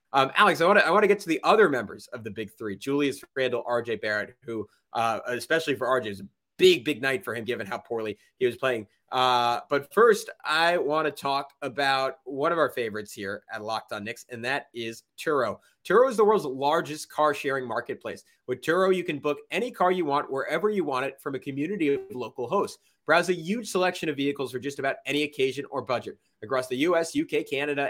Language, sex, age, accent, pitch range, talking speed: English, male, 30-49, American, 130-185 Hz, 220 wpm